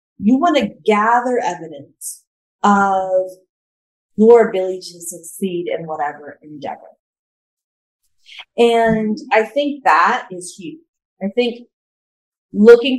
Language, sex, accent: English, female, American